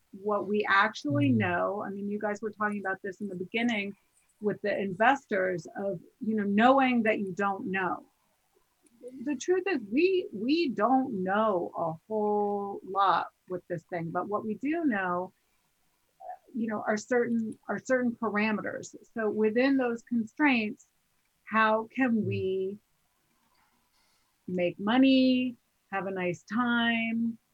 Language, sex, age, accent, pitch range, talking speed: English, female, 30-49, American, 180-230 Hz, 140 wpm